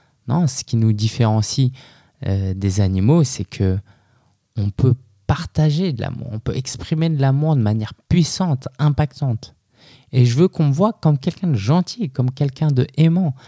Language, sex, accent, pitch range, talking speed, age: French, male, French, 110-145 Hz, 165 wpm, 20-39